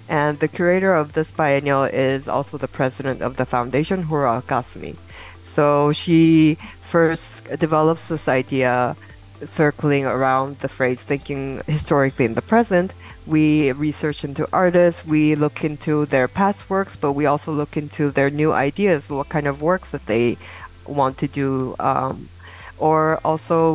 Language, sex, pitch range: English, female, 135-165 Hz